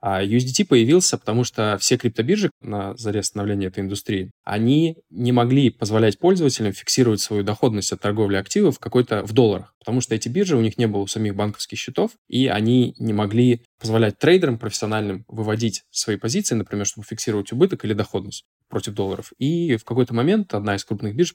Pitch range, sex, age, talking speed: 105-125 Hz, male, 10-29, 175 wpm